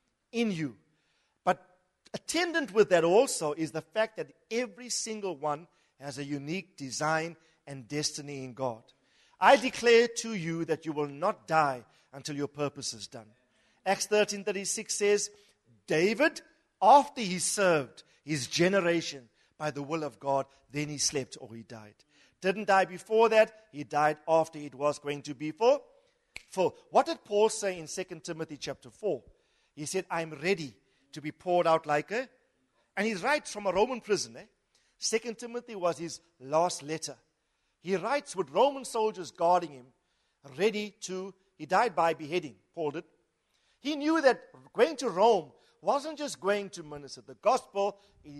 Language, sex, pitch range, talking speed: English, male, 150-225 Hz, 165 wpm